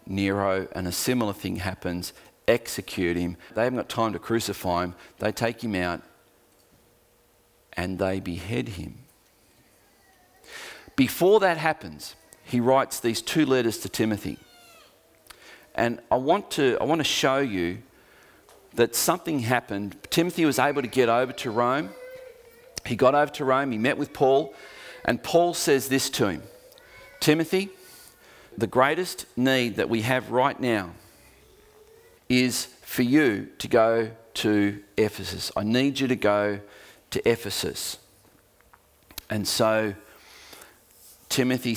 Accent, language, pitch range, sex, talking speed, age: Australian, English, 100-135 Hz, male, 130 wpm, 40-59